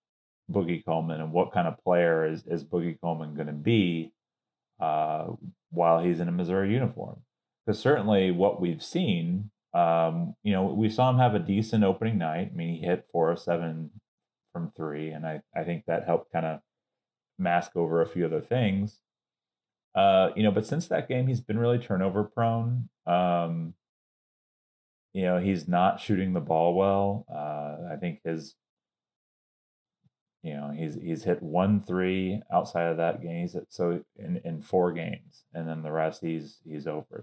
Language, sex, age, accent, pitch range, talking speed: English, male, 30-49, American, 85-105 Hz, 175 wpm